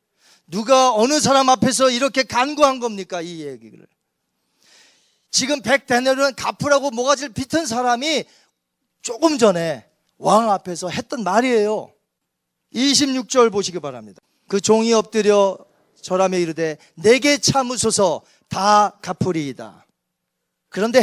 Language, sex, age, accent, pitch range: Korean, male, 40-59, native, 170-260 Hz